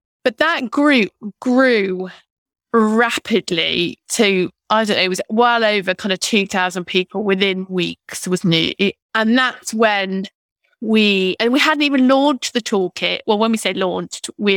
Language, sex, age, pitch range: English, female, 20-39, 185-245 Hz